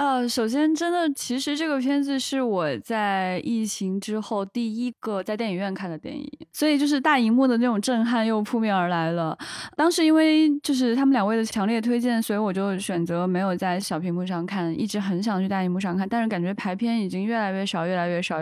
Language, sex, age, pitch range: Chinese, female, 20-39, 190-245 Hz